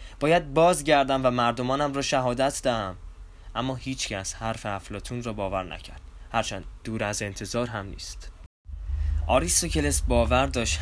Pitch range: 75-105 Hz